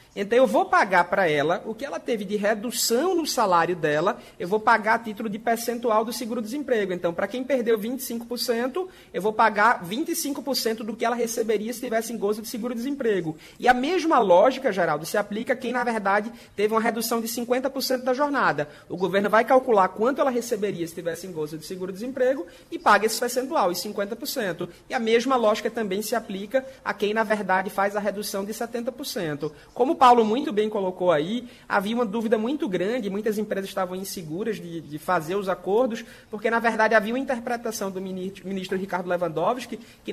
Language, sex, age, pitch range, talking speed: Portuguese, male, 30-49, 195-245 Hz, 190 wpm